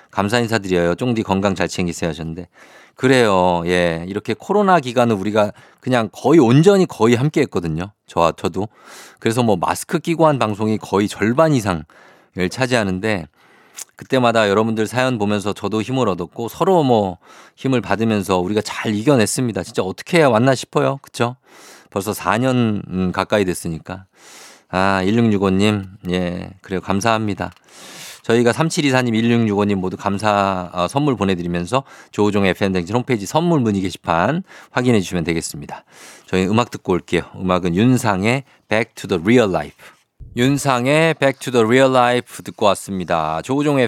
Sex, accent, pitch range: male, native, 95-130 Hz